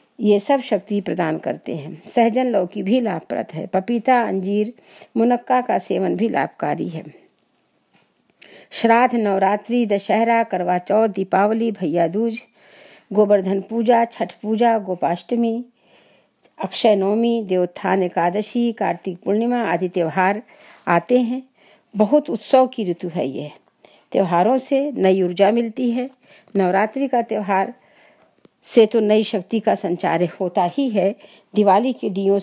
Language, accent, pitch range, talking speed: Hindi, native, 195-230 Hz, 125 wpm